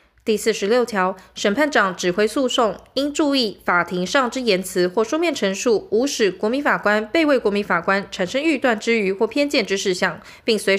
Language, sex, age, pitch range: Chinese, female, 20-39, 195-275 Hz